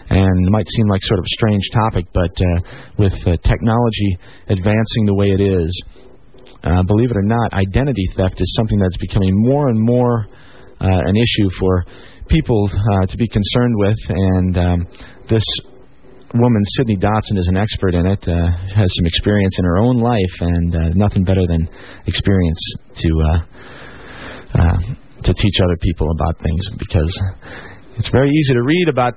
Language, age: English, 30-49